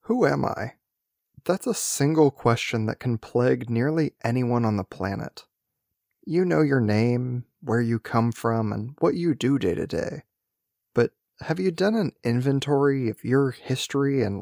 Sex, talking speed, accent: male, 165 wpm, American